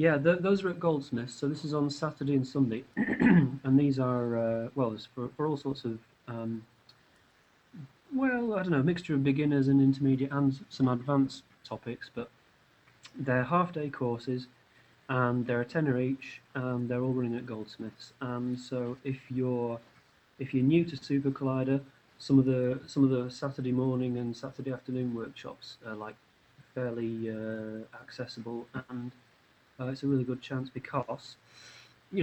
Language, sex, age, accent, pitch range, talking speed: English, male, 30-49, British, 120-140 Hz, 170 wpm